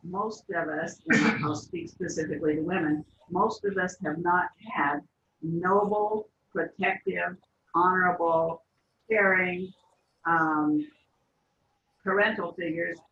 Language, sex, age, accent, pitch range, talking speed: English, female, 60-79, American, 165-205 Hz, 100 wpm